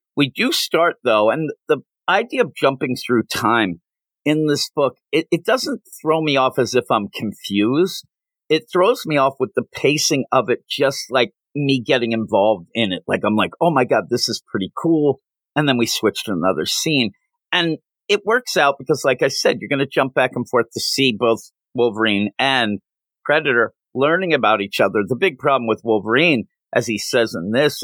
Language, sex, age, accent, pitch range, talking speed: English, male, 50-69, American, 110-145 Hz, 200 wpm